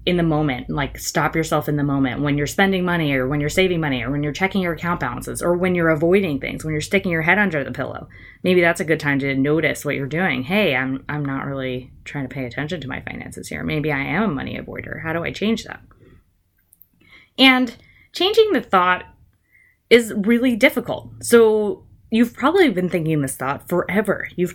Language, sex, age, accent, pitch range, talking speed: English, female, 20-39, American, 140-190 Hz, 215 wpm